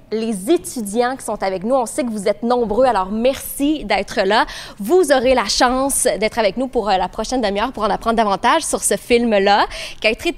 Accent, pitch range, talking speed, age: Canadian, 200-265 Hz, 215 wpm, 20-39